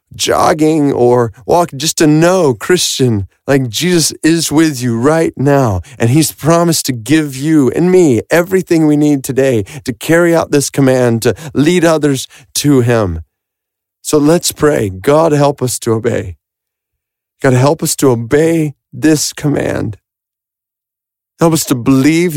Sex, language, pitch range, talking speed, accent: male, English, 125-160 Hz, 150 wpm, American